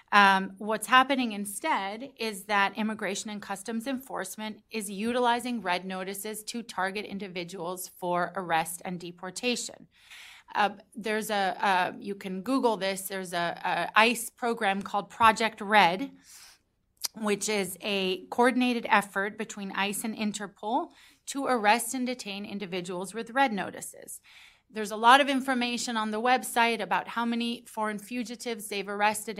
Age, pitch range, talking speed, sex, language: 30-49, 200-240 Hz, 140 wpm, female, English